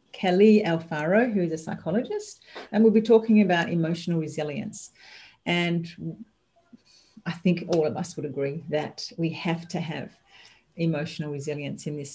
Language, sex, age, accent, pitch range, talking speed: English, female, 40-59, Australian, 165-215 Hz, 150 wpm